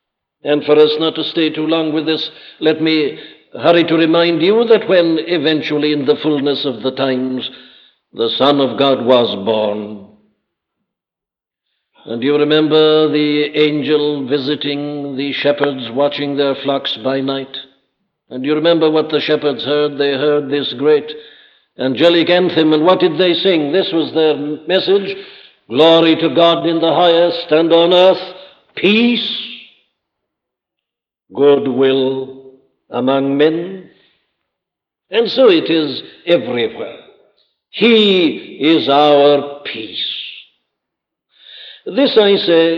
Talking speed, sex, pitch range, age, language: 130 wpm, male, 140-175 Hz, 60-79, English